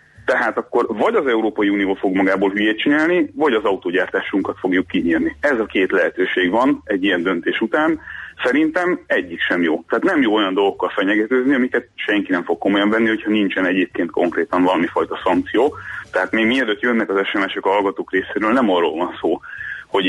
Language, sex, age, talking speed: Hungarian, male, 30-49, 180 wpm